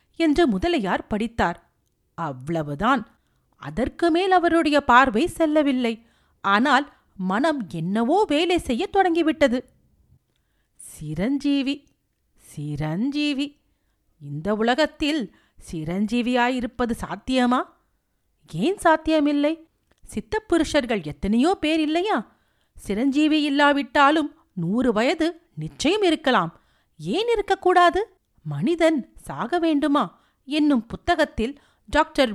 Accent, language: native, Tamil